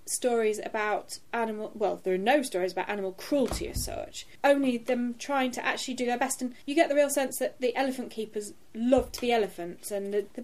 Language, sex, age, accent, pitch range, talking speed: English, female, 30-49, British, 205-260 Hz, 215 wpm